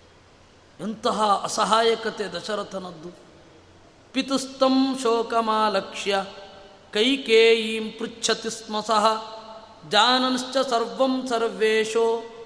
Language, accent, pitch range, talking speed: Kannada, native, 205-235 Hz, 50 wpm